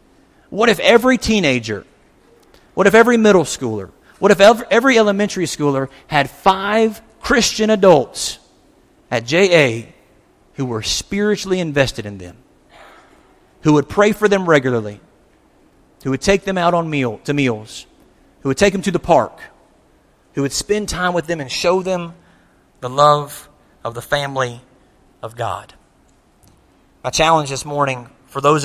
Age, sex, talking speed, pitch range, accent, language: 40-59, male, 145 wpm, 120-170 Hz, American, English